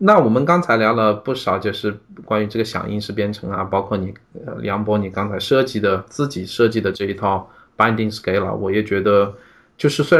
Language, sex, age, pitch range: Chinese, male, 20-39, 100-125 Hz